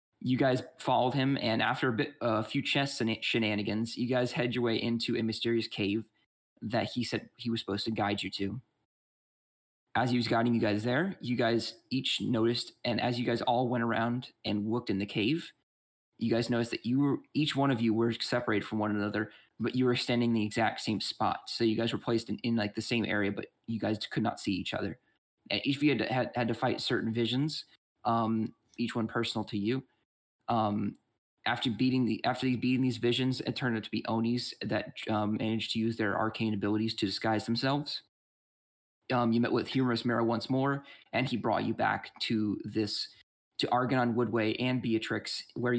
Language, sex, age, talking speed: English, male, 20-39, 210 wpm